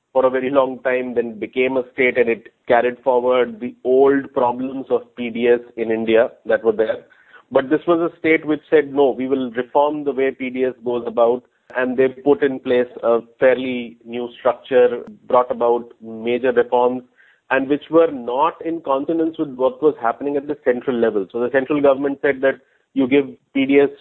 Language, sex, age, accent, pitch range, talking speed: English, male, 30-49, Indian, 125-165 Hz, 185 wpm